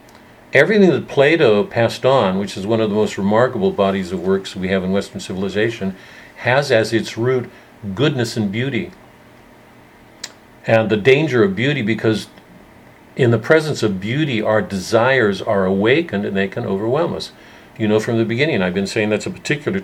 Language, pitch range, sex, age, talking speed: English, 105-125 Hz, male, 50-69, 175 wpm